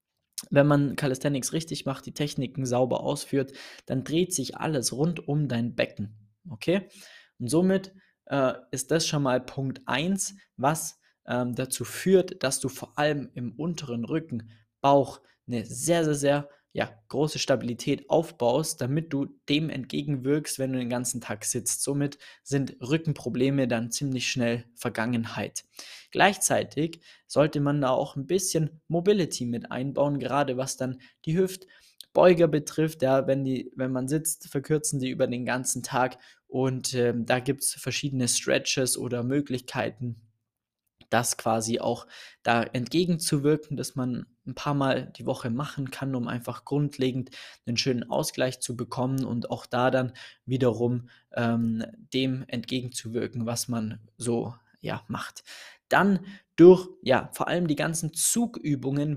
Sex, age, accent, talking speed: male, 20-39, German, 145 wpm